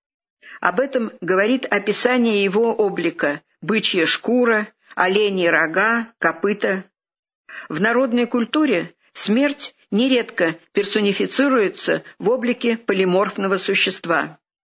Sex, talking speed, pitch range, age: female, 85 wpm, 185-240 Hz, 50-69